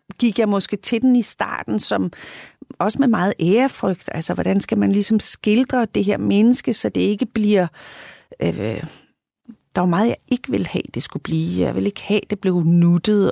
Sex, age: female, 40-59